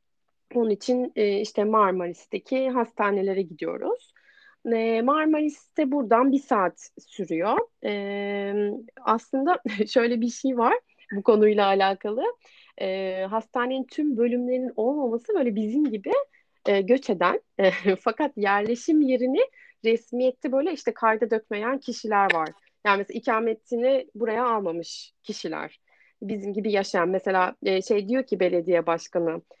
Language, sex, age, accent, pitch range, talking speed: Turkish, female, 30-49, native, 195-255 Hz, 105 wpm